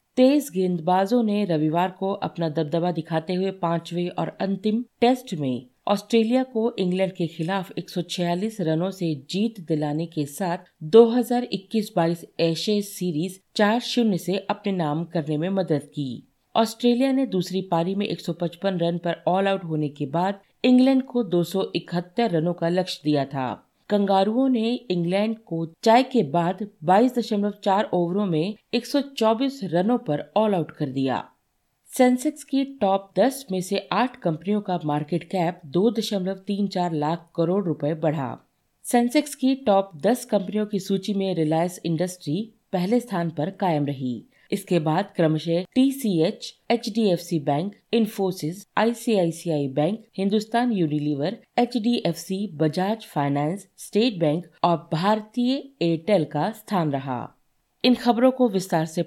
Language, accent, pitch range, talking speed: Hindi, native, 165-215 Hz, 150 wpm